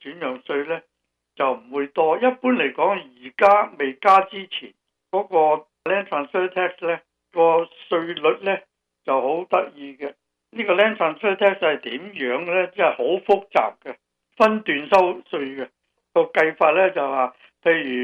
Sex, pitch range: male, 135-190 Hz